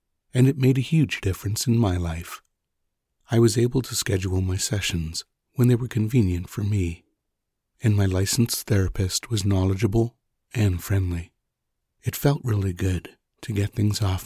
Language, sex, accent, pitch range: English, male, American, 90-120 Hz